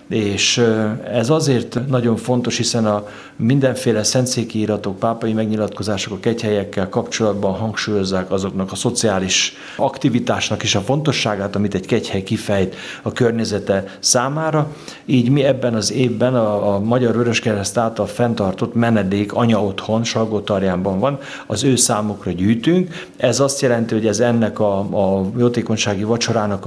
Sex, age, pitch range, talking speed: male, 50-69, 100-120 Hz, 135 wpm